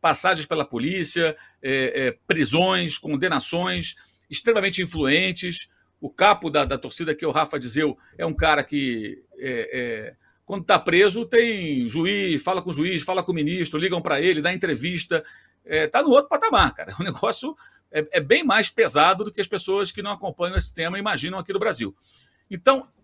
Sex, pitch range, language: male, 165-245 Hz, Portuguese